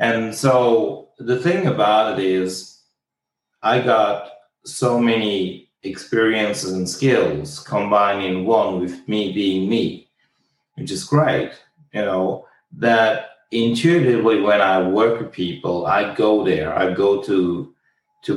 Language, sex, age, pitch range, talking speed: English, male, 30-49, 95-115 Hz, 125 wpm